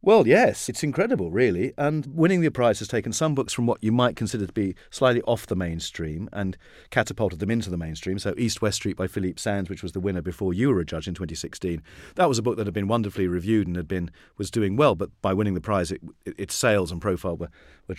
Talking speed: 255 wpm